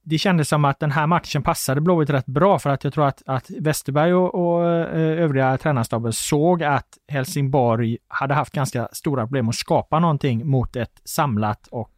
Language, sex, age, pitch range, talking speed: Swedish, male, 30-49, 115-150 Hz, 185 wpm